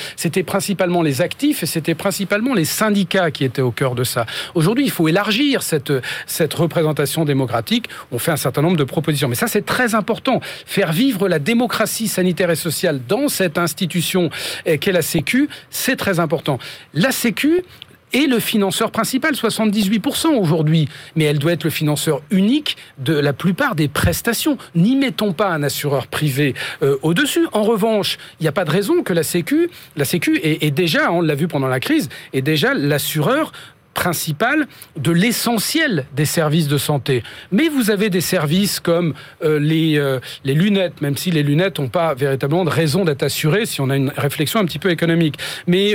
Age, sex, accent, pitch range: 40-59, male, French, 150-210 Hz